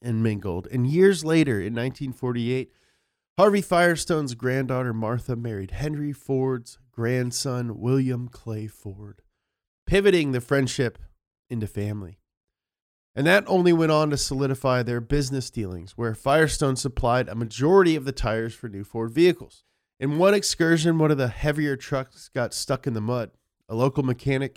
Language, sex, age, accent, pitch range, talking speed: English, male, 20-39, American, 115-145 Hz, 150 wpm